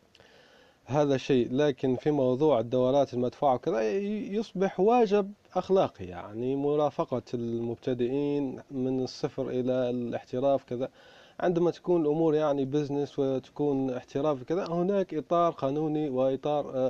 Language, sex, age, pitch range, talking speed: Arabic, male, 30-49, 120-155 Hz, 110 wpm